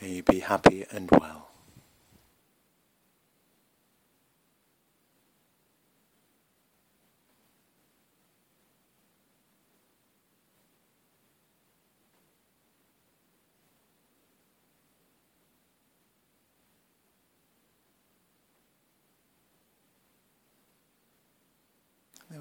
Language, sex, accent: English, male, American